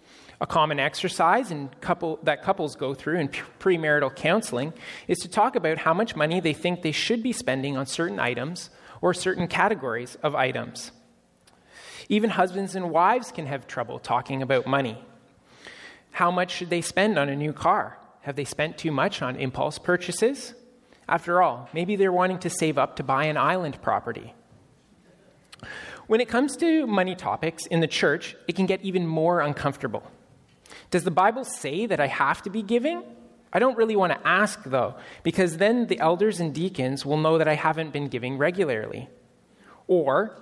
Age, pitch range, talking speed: 30-49, 150-210 Hz, 180 wpm